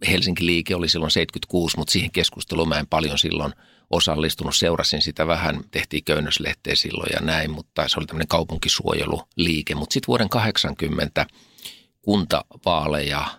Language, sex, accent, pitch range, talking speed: Finnish, male, native, 75-90 Hz, 135 wpm